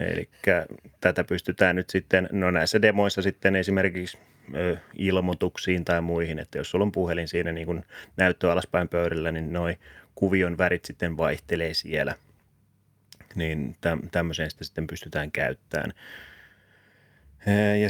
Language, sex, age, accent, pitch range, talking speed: Finnish, male, 30-49, native, 85-100 Hz, 125 wpm